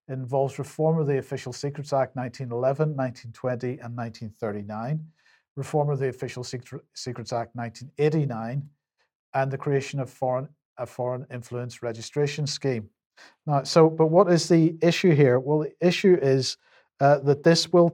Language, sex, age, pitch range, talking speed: English, male, 40-59, 125-150 Hz, 150 wpm